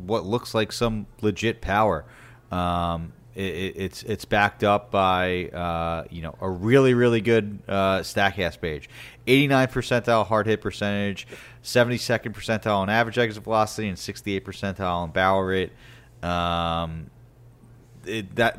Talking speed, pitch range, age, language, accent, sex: 140 wpm, 85-110 Hz, 30-49, English, American, male